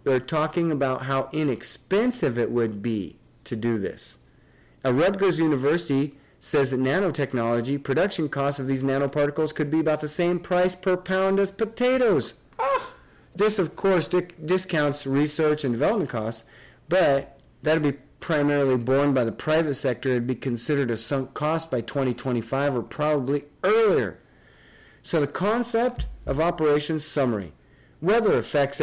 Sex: male